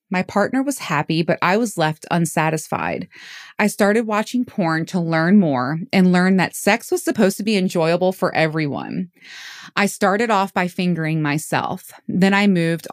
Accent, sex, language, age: American, female, English, 20-39